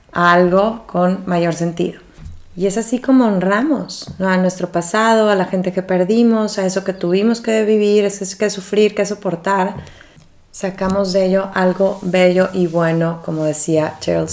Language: English